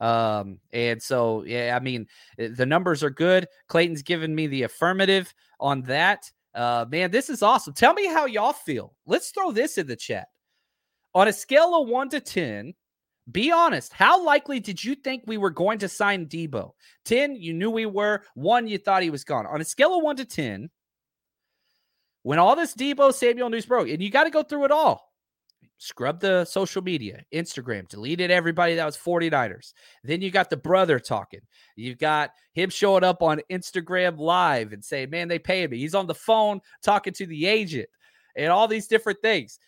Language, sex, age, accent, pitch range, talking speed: English, male, 30-49, American, 160-255 Hz, 195 wpm